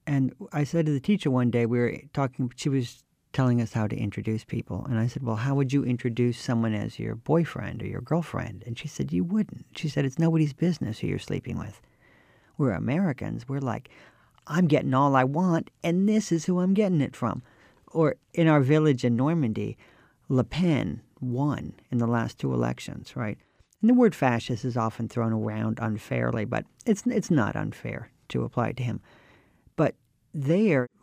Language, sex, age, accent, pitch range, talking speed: English, male, 50-69, American, 115-150 Hz, 195 wpm